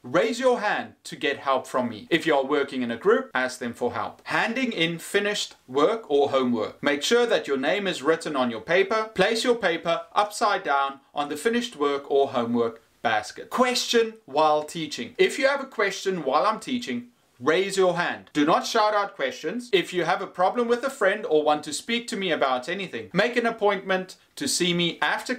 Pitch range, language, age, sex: 140-225 Hz, English, 30-49, male